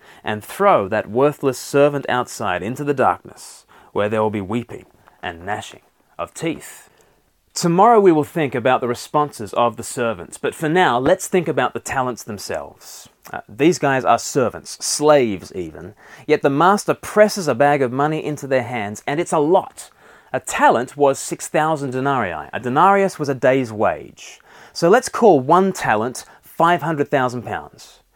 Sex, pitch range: male, 125-175 Hz